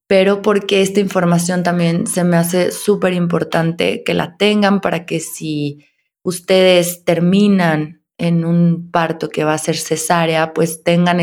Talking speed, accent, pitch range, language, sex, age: 150 wpm, Mexican, 165-190 Hz, Spanish, female, 20-39